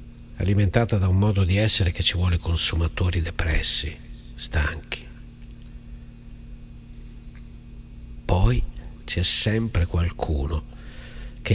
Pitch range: 85-115 Hz